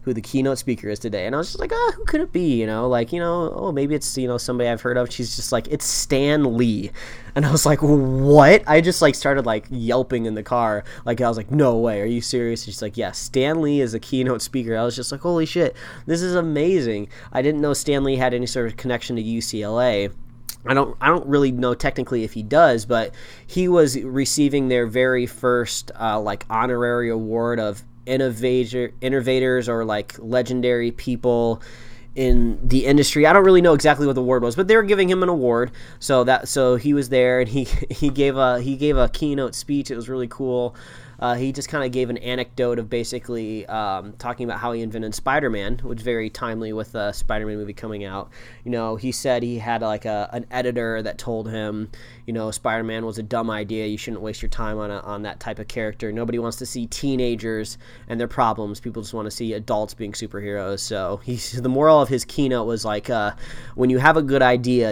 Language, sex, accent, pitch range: English, male, American, 110-130 Hz